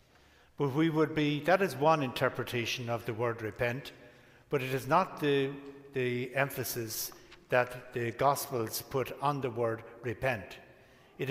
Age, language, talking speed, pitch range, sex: 60-79, English, 150 wpm, 125-145 Hz, male